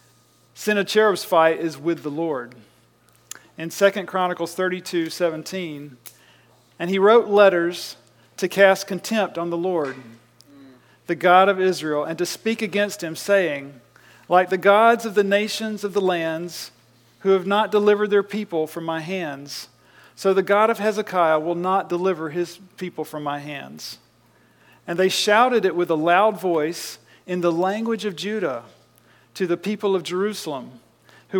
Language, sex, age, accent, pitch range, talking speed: English, male, 40-59, American, 140-195 Hz, 155 wpm